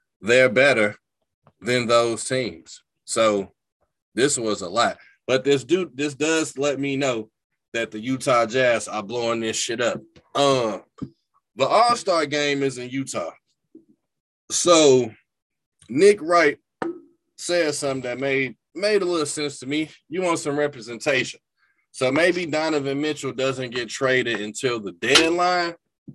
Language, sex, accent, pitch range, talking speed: English, male, American, 115-150 Hz, 140 wpm